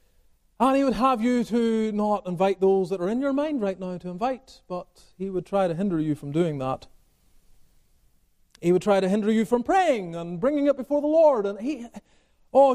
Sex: male